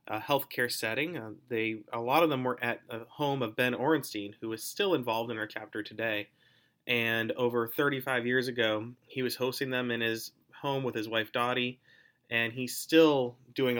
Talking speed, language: 190 wpm, English